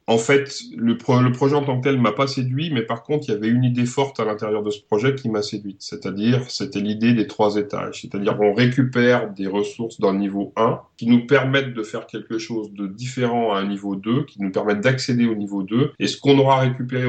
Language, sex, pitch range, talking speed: French, male, 105-130 Hz, 240 wpm